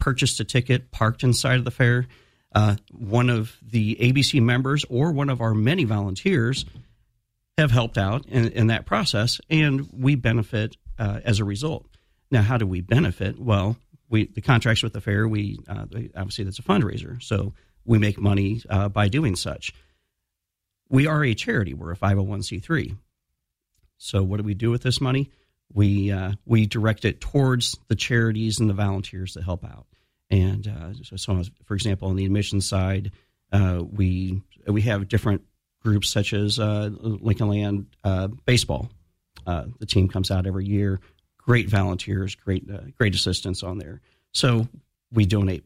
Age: 40-59